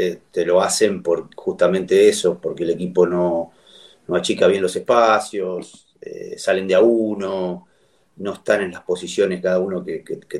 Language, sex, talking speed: English, male, 175 wpm